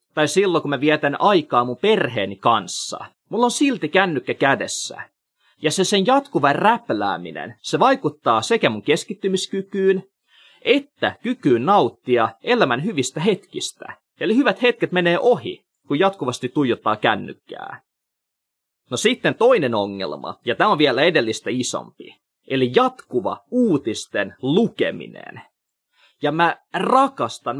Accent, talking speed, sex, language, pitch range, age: native, 120 wpm, male, Finnish, 150-230 Hz, 30-49